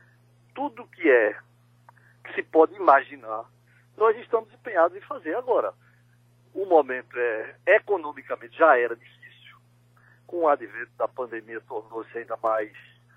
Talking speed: 130 wpm